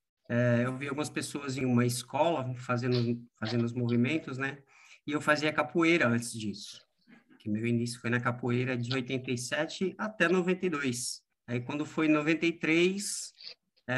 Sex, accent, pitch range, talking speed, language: male, Brazilian, 120-160 Hz, 145 wpm, Portuguese